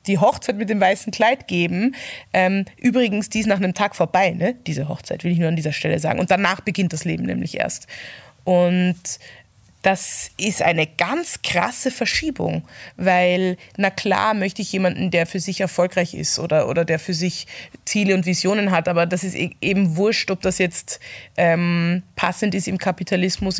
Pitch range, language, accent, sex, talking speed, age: 170-215 Hz, German, German, female, 180 wpm, 20-39